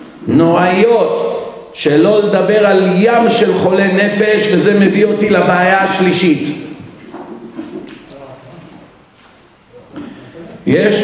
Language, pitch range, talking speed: Hebrew, 155-200 Hz, 75 wpm